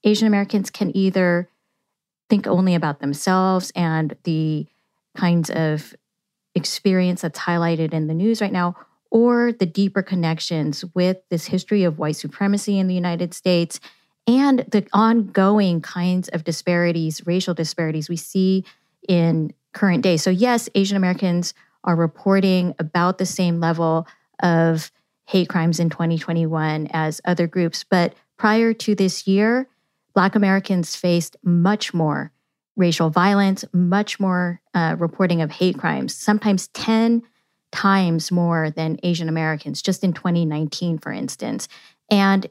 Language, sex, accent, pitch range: English, female, American, 170-205 Hz